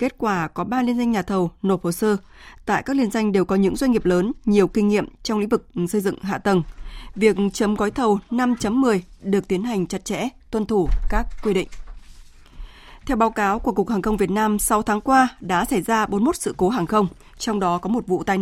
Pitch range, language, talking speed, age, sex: 190-225 Hz, Vietnamese, 235 wpm, 20-39, female